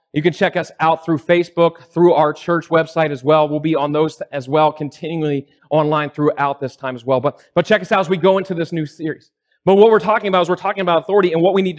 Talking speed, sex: 265 wpm, male